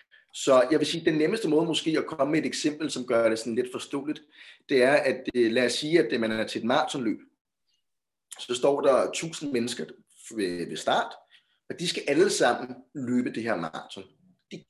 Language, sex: Danish, male